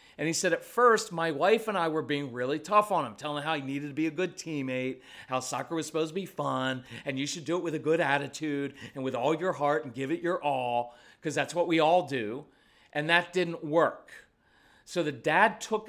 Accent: American